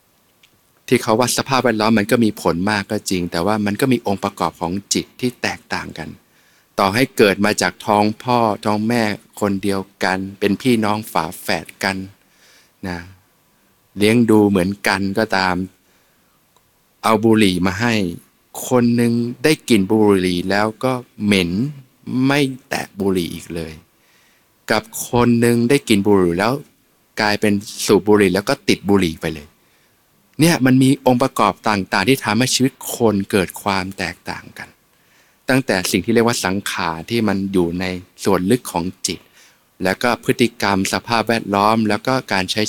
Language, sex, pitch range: Thai, male, 95-120 Hz